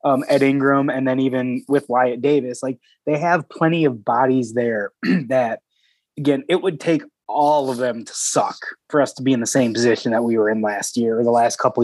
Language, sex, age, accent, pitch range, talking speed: English, male, 20-39, American, 125-150 Hz, 225 wpm